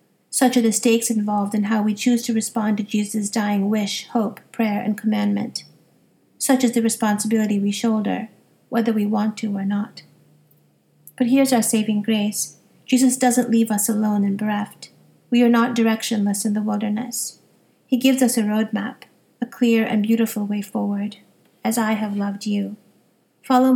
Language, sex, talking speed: English, female, 170 wpm